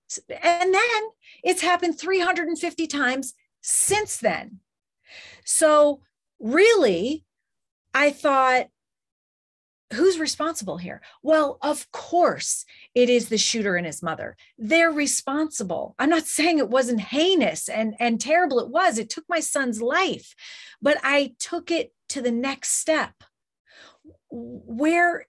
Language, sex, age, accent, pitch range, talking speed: English, female, 40-59, American, 255-340 Hz, 125 wpm